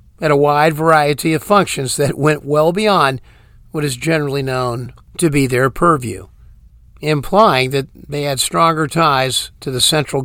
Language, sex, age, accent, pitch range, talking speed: English, male, 50-69, American, 125-170 Hz, 160 wpm